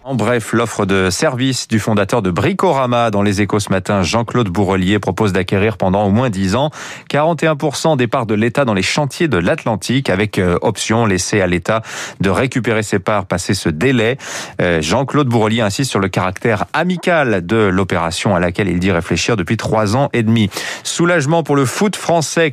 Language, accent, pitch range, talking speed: French, French, 100-135 Hz, 185 wpm